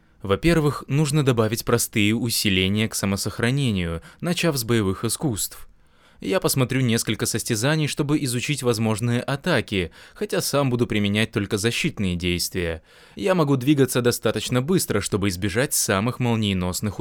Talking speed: 125 wpm